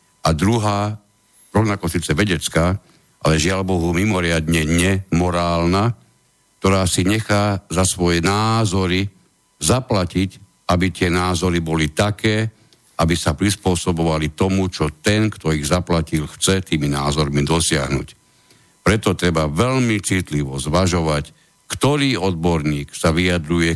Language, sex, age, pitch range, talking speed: Slovak, male, 60-79, 80-95 Hz, 110 wpm